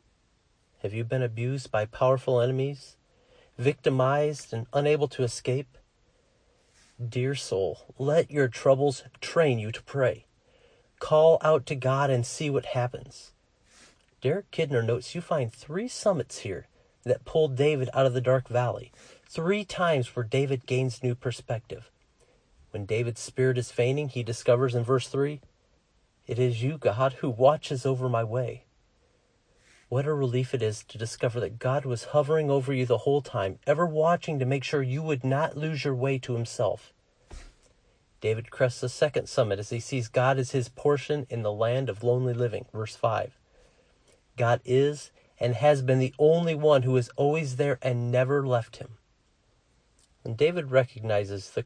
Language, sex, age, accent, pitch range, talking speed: English, male, 40-59, American, 120-140 Hz, 165 wpm